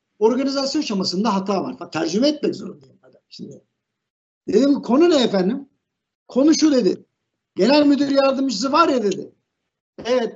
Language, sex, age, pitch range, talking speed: Turkish, male, 60-79, 210-275 Hz, 135 wpm